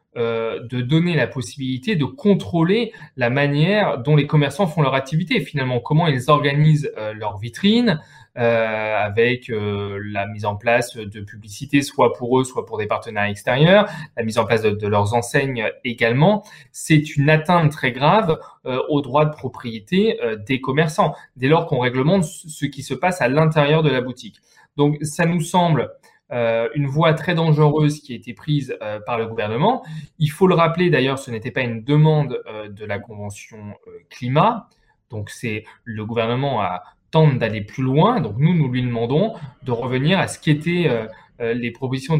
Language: French